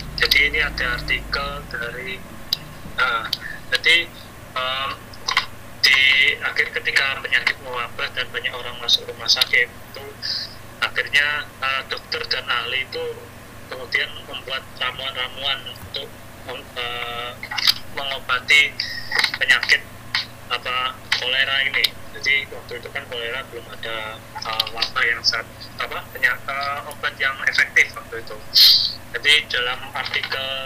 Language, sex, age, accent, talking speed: Indonesian, male, 20-39, native, 115 wpm